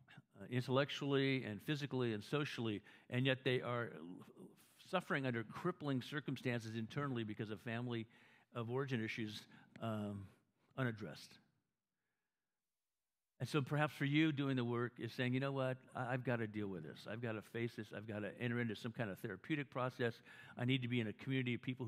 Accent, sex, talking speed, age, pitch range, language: American, male, 185 wpm, 50-69, 110-130 Hz, English